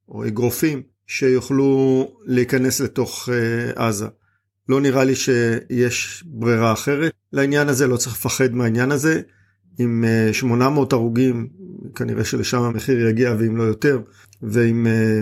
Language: Hebrew